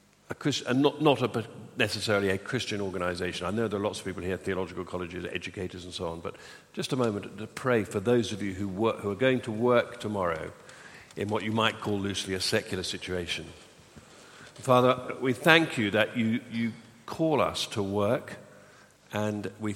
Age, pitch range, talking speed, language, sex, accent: 50-69, 100-125 Hz, 195 wpm, English, male, British